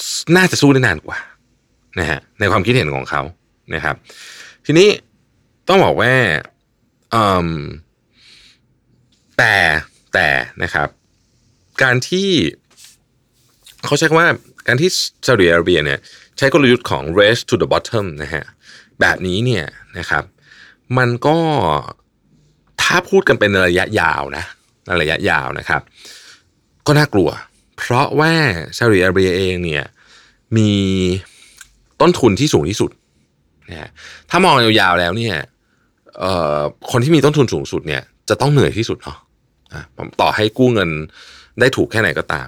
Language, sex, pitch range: Thai, male, 85-130 Hz